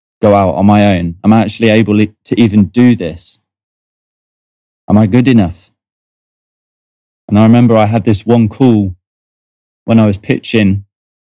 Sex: male